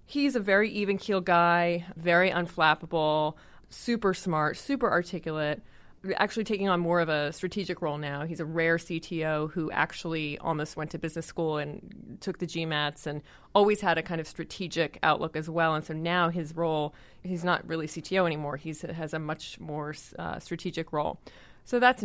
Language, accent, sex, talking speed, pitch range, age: English, American, female, 180 wpm, 155-180 Hz, 30-49